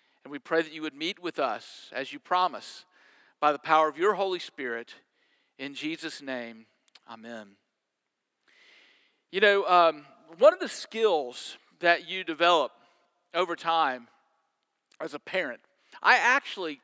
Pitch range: 165-220 Hz